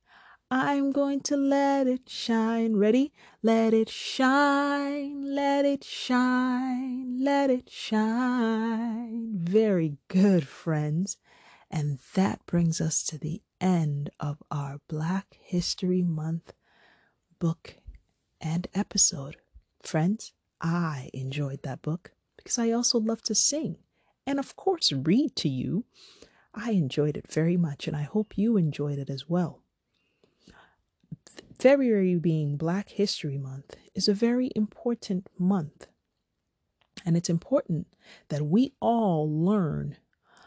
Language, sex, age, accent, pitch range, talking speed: English, female, 30-49, American, 160-240 Hz, 120 wpm